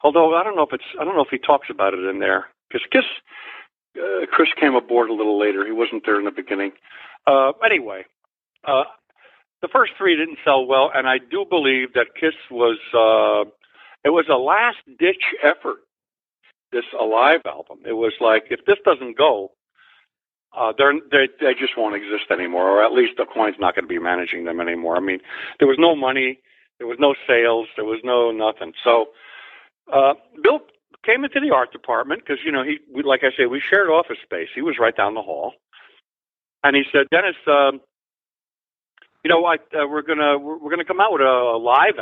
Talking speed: 205 wpm